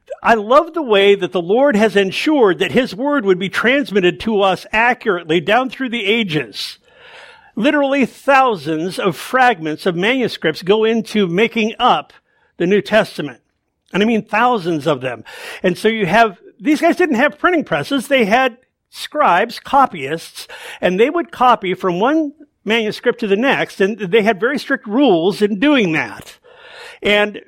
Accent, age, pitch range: American, 50-69, 190-255 Hz